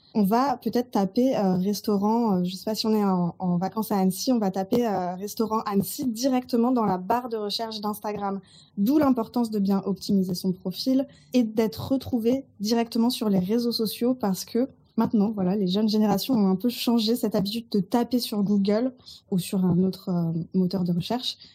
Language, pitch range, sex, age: French, 195-240 Hz, female, 20-39